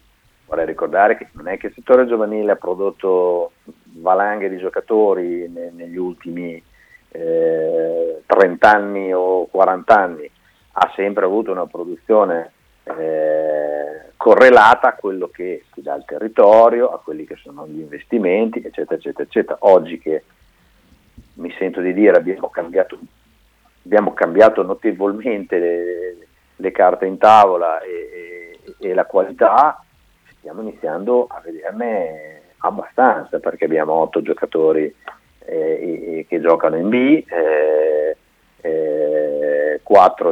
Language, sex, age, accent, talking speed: Italian, male, 50-69, native, 125 wpm